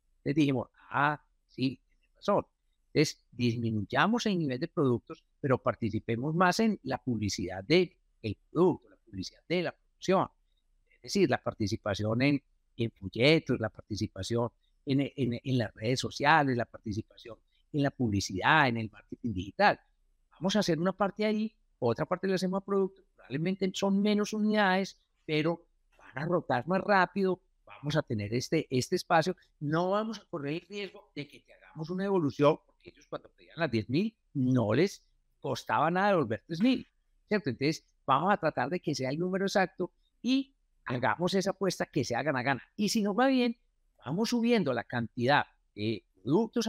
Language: Spanish